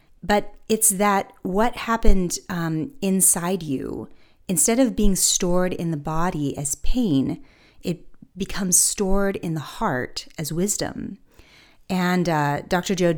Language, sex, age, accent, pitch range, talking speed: English, female, 30-49, American, 150-190 Hz, 130 wpm